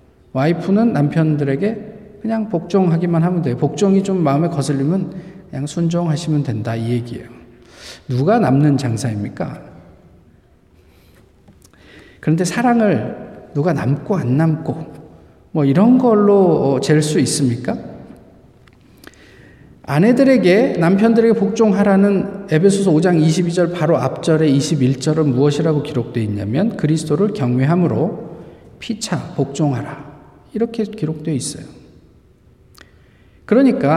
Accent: native